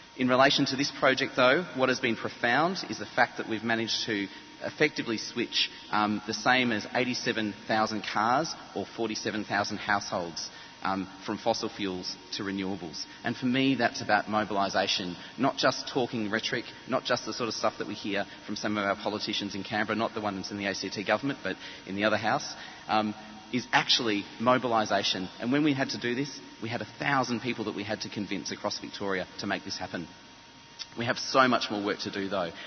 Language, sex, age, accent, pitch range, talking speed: English, male, 30-49, Australian, 100-115 Hz, 195 wpm